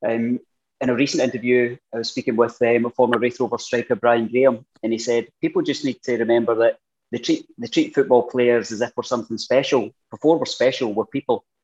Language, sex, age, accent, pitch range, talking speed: English, male, 30-49, British, 115-140 Hz, 215 wpm